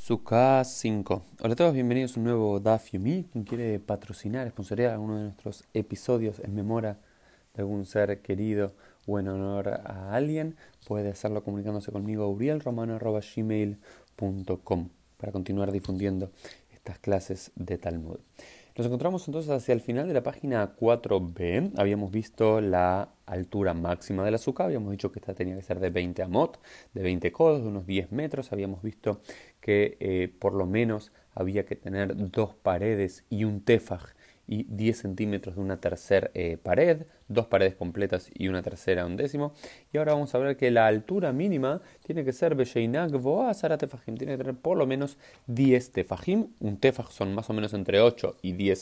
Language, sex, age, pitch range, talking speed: Spanish, male, 20-39, 100-125 Hz, 175 wpm